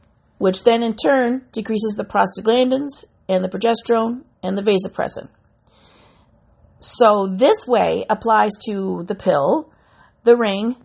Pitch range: 200-255 Hz